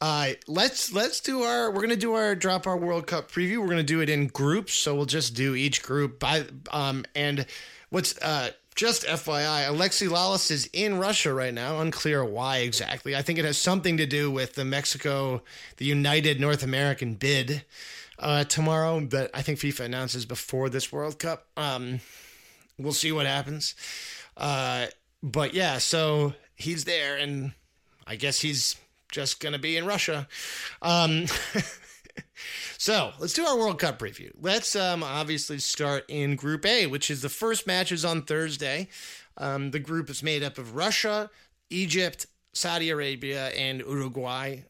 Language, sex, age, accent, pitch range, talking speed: English, male, 20-39, American, 135-165 Hz, 170 wpm